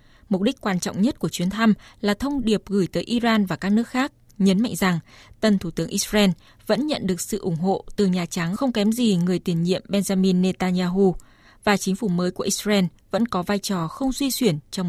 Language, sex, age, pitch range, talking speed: Vietnamese, female, 20-39, 180-225 Hz, 225 wpm